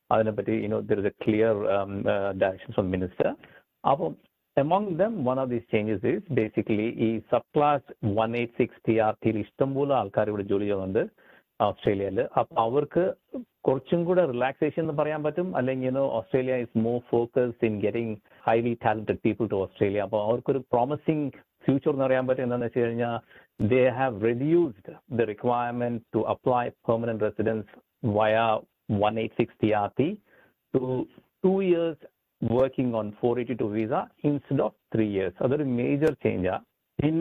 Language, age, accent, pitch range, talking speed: Malayalam, 50-69, native, 110-145 Hz, 155 wpm